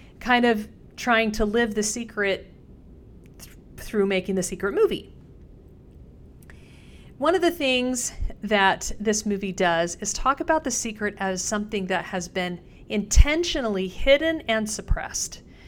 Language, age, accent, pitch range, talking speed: English, 40-59, American, 190-240 Hz, 135 wpm